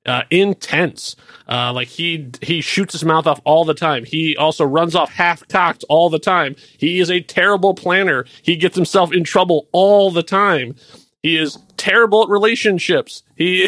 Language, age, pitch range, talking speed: English, 30-49, 130-175 Hz, 180 wpm